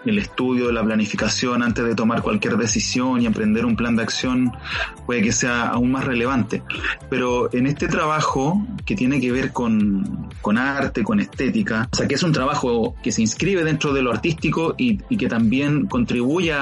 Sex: male